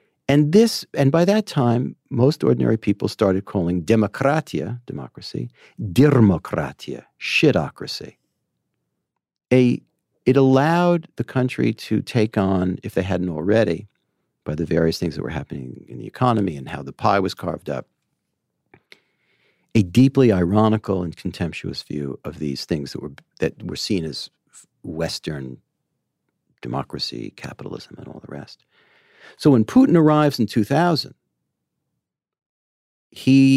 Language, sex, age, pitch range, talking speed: English, male, 50-69, 85-130 Hz, 130 wpm